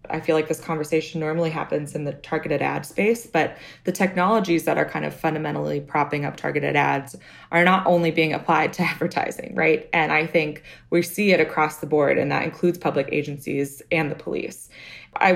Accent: American